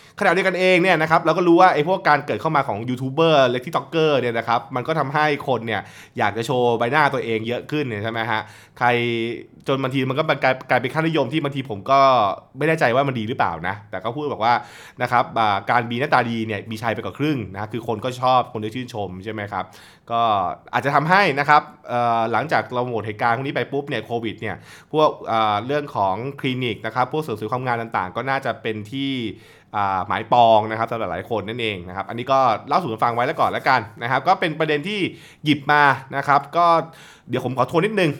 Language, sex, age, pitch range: Thai, male, 20-39, 110-145 Hz